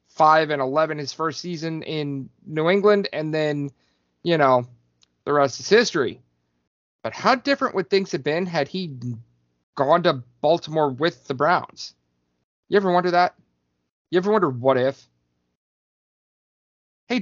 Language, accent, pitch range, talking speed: English, American, 115-175 Hz, 145 wpm